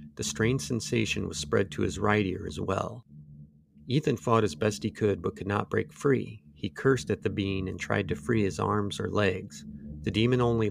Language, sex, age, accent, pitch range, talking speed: English, male, 40-59, American, 90-110 Hz, 215 wpm